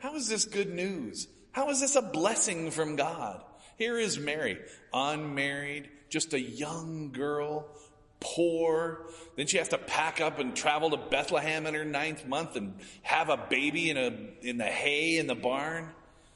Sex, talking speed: male, 170 wpm